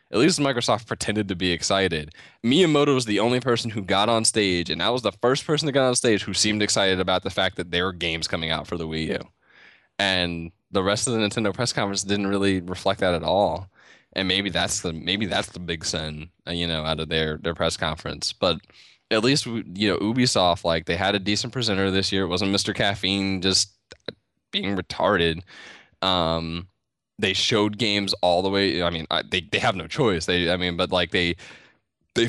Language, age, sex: English, 10-29, male